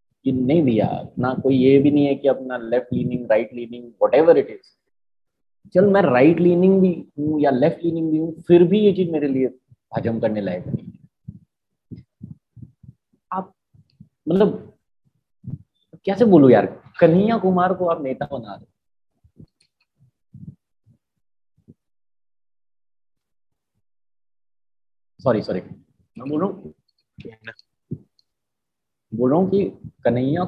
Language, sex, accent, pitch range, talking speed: Hindi, male, native, 125-180 Hz, 110 wpm